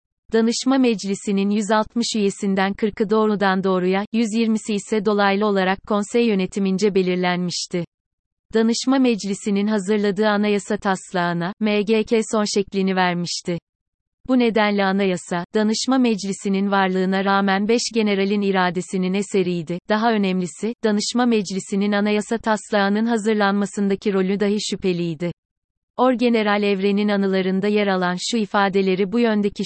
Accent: native